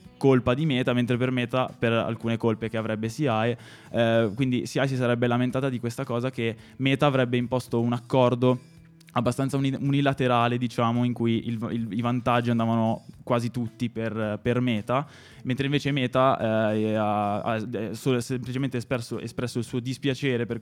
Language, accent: Italian, native